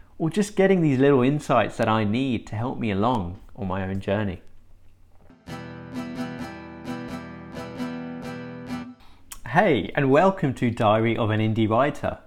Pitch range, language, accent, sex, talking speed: 95-135 Hz, English, British, male, 125 wpm